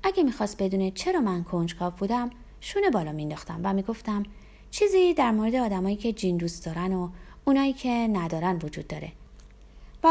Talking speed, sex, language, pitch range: 160 wpm, female, Persian, 170-245 Hz